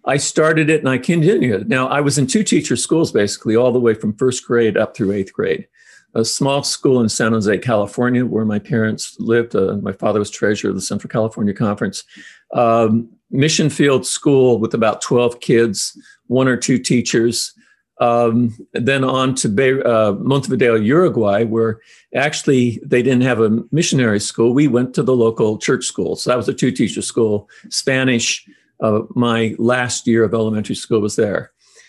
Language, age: English, 50-69